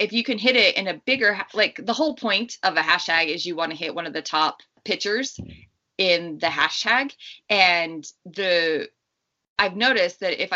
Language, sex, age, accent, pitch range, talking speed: English, female, 20-39, American, 165-230 Hz, 195 wpm